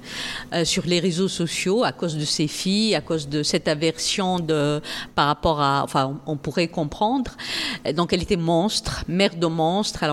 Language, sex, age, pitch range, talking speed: French, female, 50-69, 170-225 Hz, 180 wpm